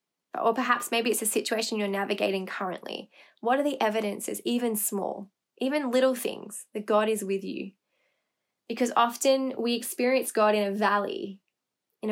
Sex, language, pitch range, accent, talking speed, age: female, English, 205-235 Hz, Australian, 160 wpm, 10-29